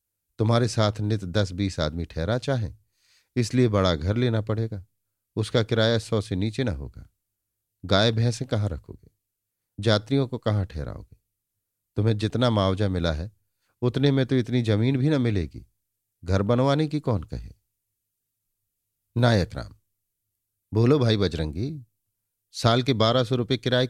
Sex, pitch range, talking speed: male, 100-125 Hz, 140 wpm